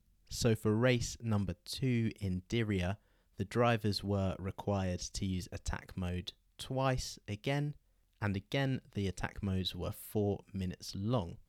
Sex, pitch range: male, 90-110 Hz